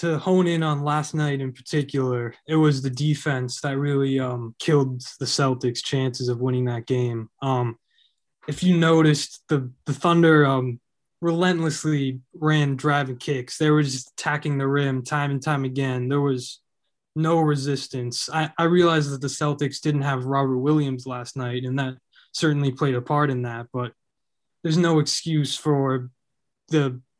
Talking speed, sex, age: 165 wpm, male, 20-39